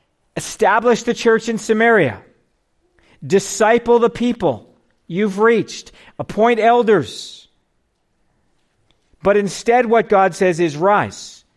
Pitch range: 165-220 Hz